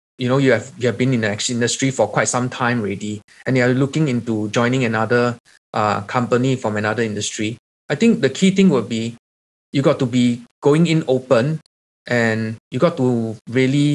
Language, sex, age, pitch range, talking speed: English, male, 20-39, 110-135 Hz, 200 wpm